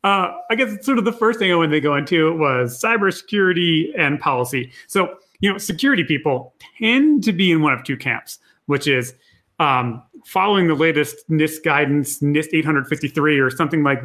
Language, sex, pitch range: English, male, 135-195 Hz